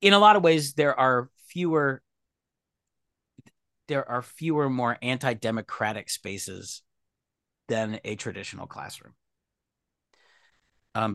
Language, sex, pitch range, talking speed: English, male, 110-140 Hz, 100 wpm